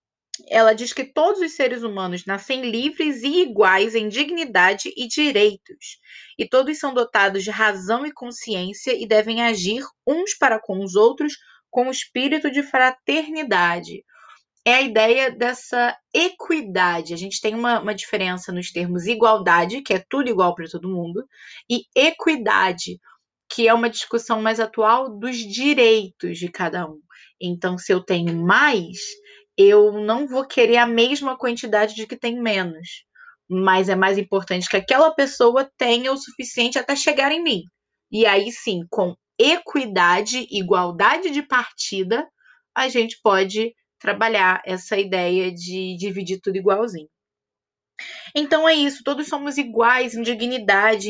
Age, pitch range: 20-39, 195-265 Hz